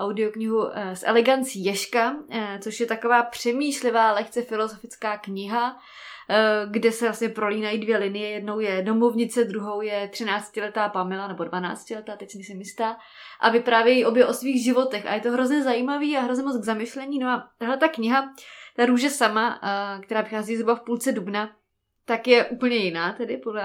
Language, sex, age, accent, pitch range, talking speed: Czech, female, 20-39, native, 215-240 Hz, 170 wpm